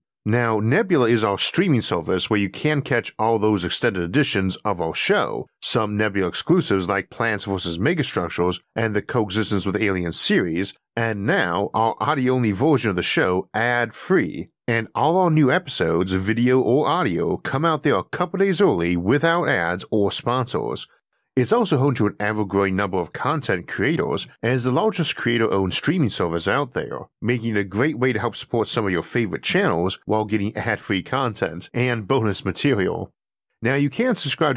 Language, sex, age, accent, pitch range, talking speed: English, male, 50-69, American, 100-130 Hz, 175 wpm